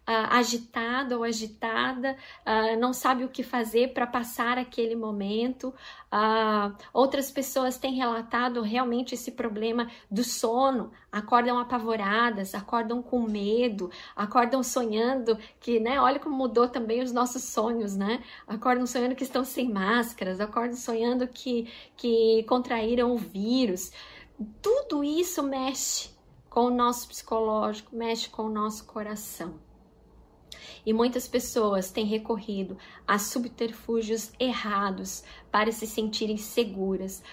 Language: Portuguese